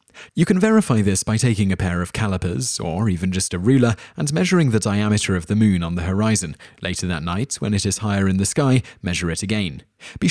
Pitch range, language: 95-120 Hz, English